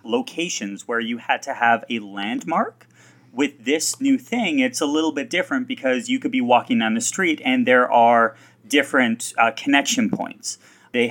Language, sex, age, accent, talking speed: English, male, 30-49, American, 180 wpm